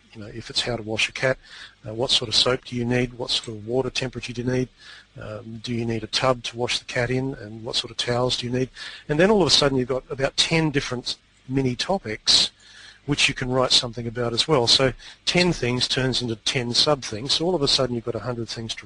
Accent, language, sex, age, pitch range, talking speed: Australian, English, male, 40-59, 110-130 Hz, 265 wpm